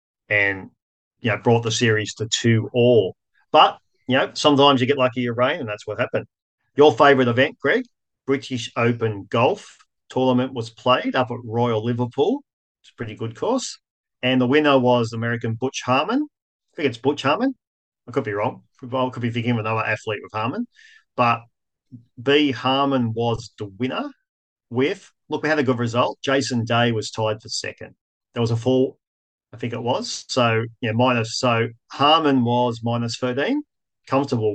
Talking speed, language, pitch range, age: 180 wpm, English, 110-130 Hz, 40-59